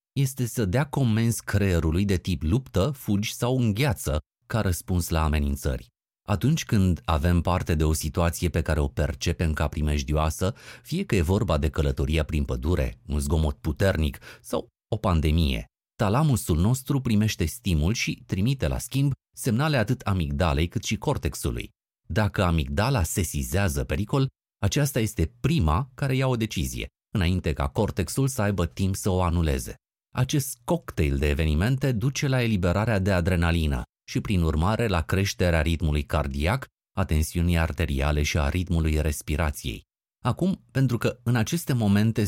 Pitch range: 80-115 Hz